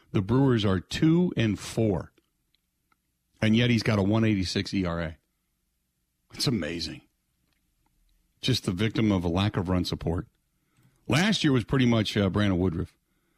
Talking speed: 140 wpm